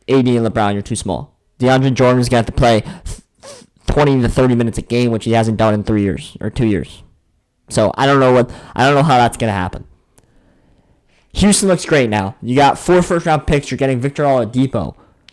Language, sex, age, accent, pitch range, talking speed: English, male, 20-39, American, 115-165 Hz, 215 wpm